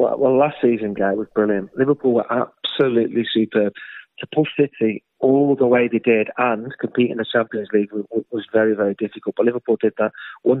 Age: 30-49